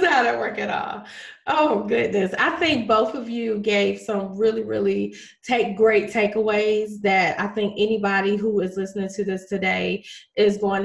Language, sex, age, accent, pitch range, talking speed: English, female, 20-39, American, 200-255 Hz, 170 wpm